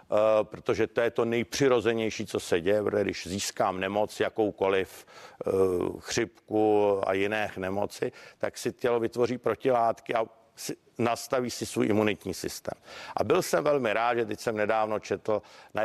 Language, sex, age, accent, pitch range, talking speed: Czech, male, 50-69, native, 105-120 Hz, 155 wpm